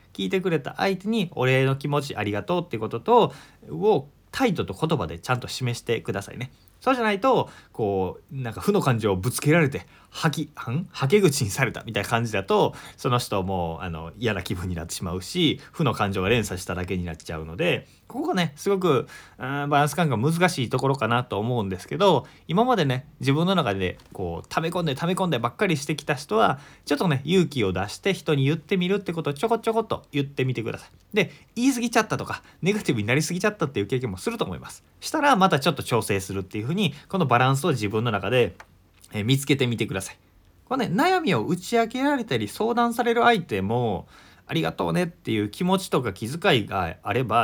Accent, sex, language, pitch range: native, male, Japanese, 110-175 Hz